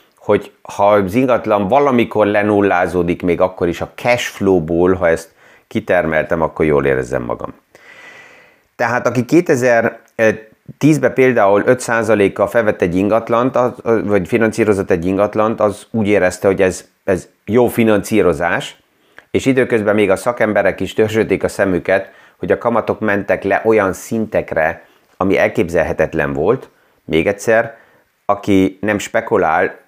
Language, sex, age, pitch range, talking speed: Hungarian, male, 30-49, 100-120 Hz, 125 wpm